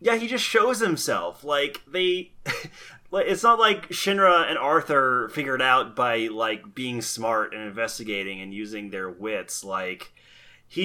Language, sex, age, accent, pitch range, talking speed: English, male, 30-49, American, 105-135 Hz, 155 wpm